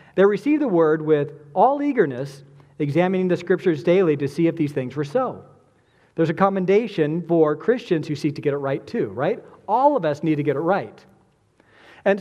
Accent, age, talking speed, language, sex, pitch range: American, 40-59, 195 wpm, English, male, 145-195 Hz